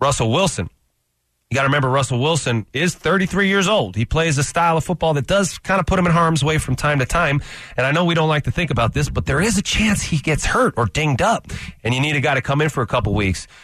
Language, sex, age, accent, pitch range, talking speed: English, male, 30-49, American, 115-155 Hz, 280 wpm